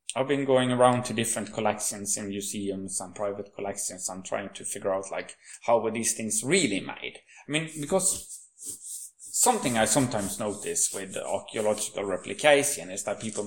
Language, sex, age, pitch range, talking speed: English, male, 30-49, 100-135 Hz, 165 wpm